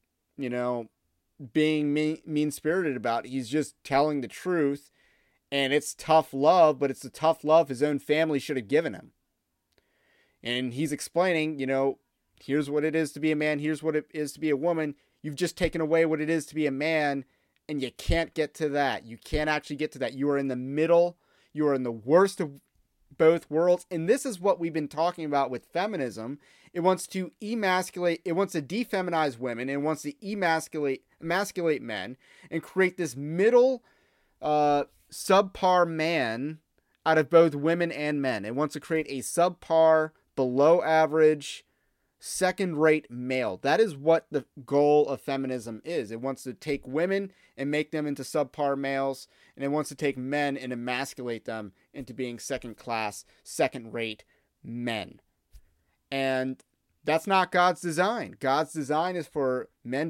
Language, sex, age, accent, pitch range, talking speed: English, male, 30-49, American, 135-165 Hz, 175 wpm